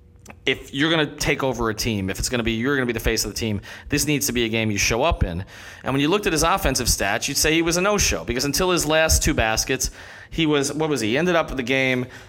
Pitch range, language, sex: 105-145 Hz, English, male